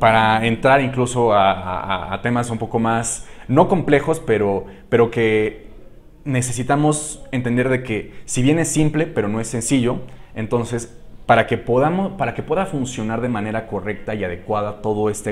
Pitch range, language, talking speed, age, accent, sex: 105-130 Hz, Spanish, 165 wpm, 30-49, Mexican, male